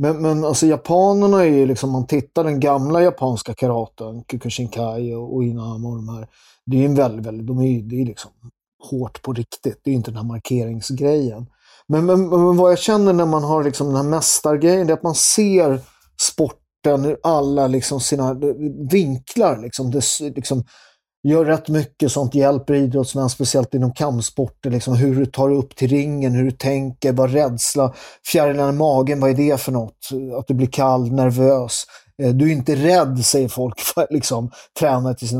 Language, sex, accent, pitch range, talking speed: English, male, Swedish, 125-150 Hz, 185 wpm